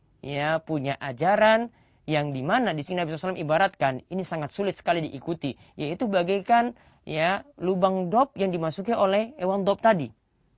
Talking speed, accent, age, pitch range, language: 155 wpm, native, 30-49, 140-205 Hz, Indonesian